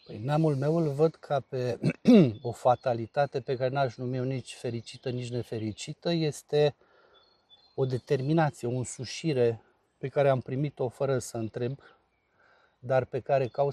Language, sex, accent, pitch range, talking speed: Romanian, male, native, 125-150 Hz, 145 wpm